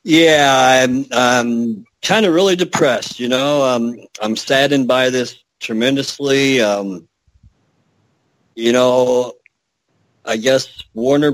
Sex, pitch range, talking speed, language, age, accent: male, 110-135 Hz, 105 wpm, English, 50-69, American